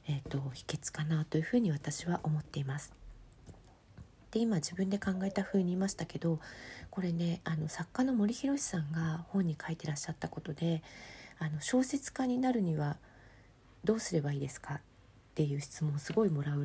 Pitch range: 140-190 Hz